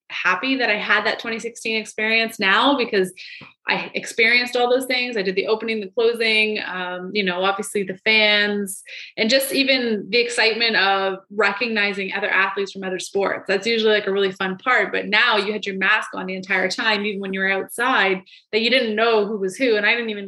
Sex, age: female, 20-39